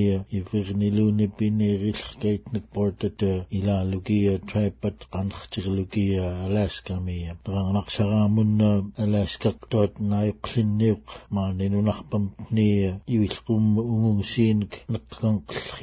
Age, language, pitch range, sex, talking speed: 60-79, English, 95-105 Hz, male, 120 wpm